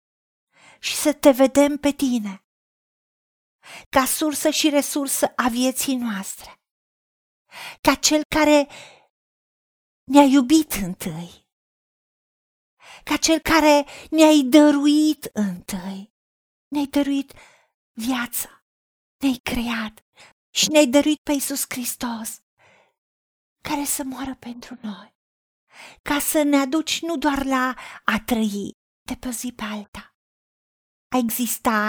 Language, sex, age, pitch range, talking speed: Romanian, female, 50-69, 235-295 Hz, 105 wpm